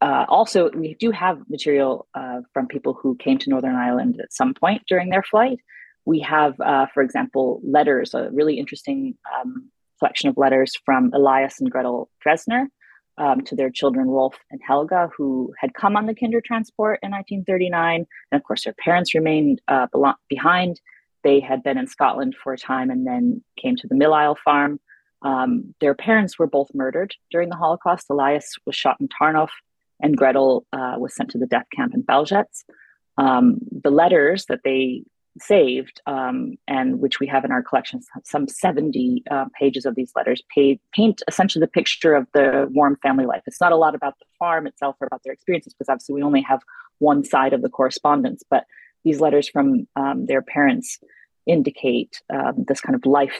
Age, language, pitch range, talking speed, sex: 30-49, English, 135-220 Hz, 190 wpm, female